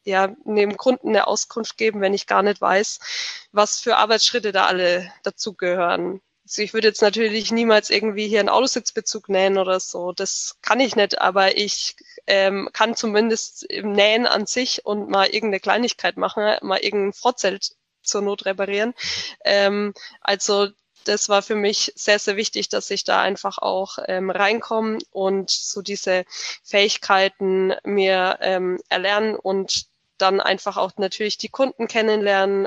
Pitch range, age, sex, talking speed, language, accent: 195-220 Hz, 20-39, female, 155 wpm, German, German